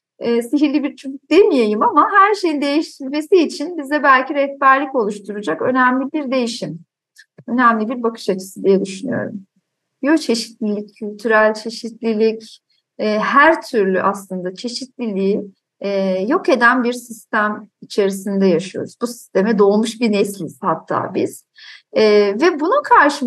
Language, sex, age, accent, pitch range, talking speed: Turkish, female, 50-69, native, 210-295 Hz, 125 wpm